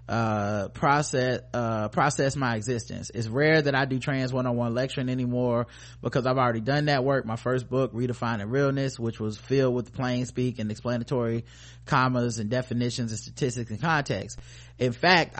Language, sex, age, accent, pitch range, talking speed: English, male, 30-49, American, 115-135 Hz, 175 wpm